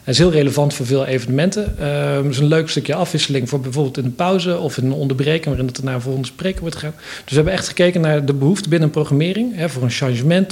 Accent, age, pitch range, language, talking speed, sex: Dutch, 40-59, 135-165 Hz, Dutch, 255 wpm, male